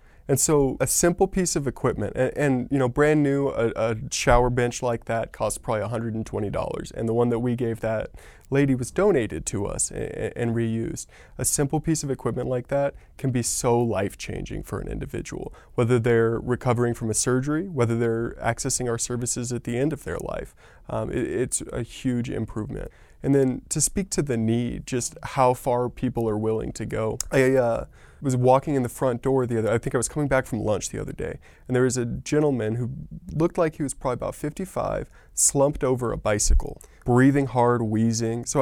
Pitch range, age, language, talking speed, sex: 115-140 Hz, 20-39, English, 205 wpm, male